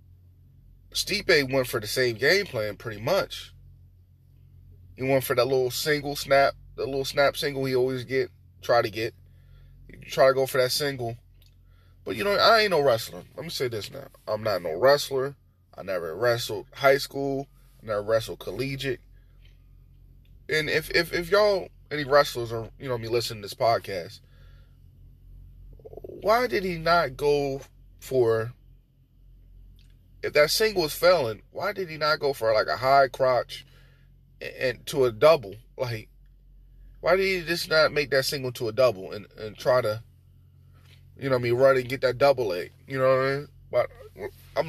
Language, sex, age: English, male, 20-39